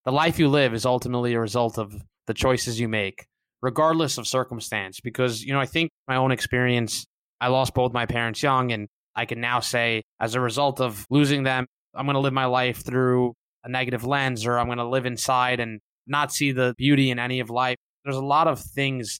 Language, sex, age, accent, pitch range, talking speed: English, male, 20-39, American, 115-130 Hz, 220 wpm